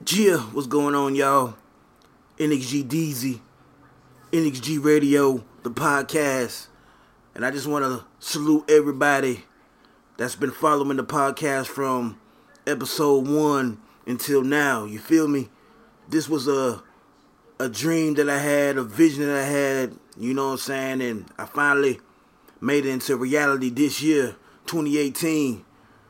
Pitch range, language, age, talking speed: 130-150 Hz, English, 30-49, 135 wpm